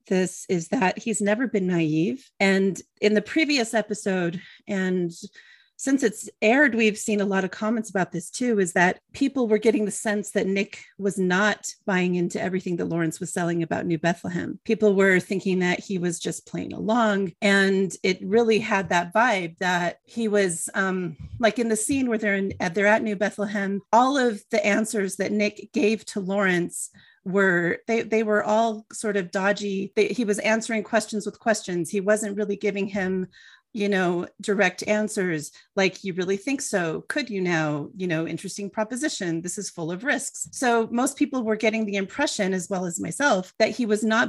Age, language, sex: 40-59, English, female